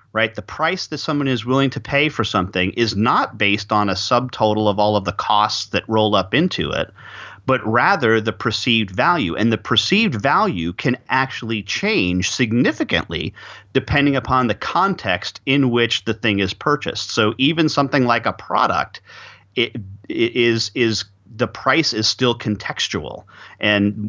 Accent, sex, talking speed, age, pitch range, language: American, male, 165 wpm, 30-49, 100-125 Hz, English